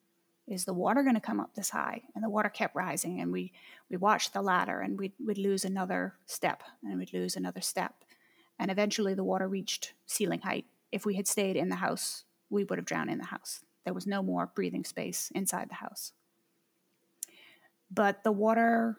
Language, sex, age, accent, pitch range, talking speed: English, female, 30-49, American, 195-230 Hz, 200 wpm